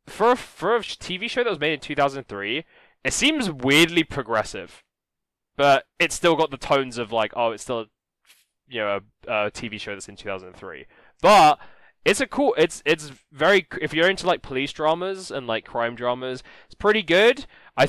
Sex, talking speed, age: male, 180 wpm, 10-29